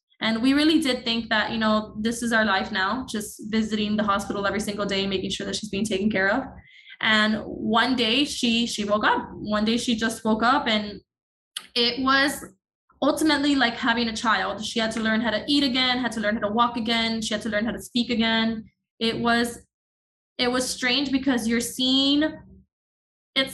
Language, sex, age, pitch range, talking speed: English, female, 20-39, 220-260 Hz, 210 wpm